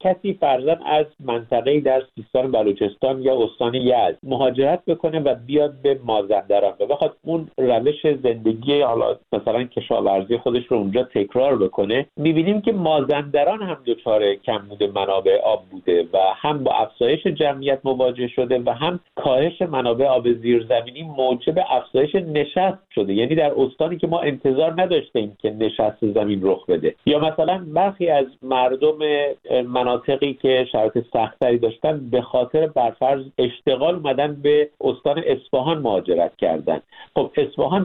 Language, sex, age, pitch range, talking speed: Persian, male, 50-69, 125-165 Hz, 145 wpm